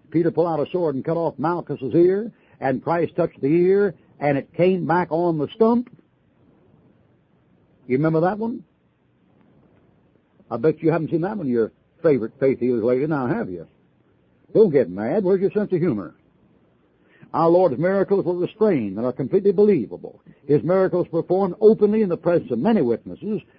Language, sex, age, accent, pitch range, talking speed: English, male, 60-79, American, 150-195 Hz, 175 wpm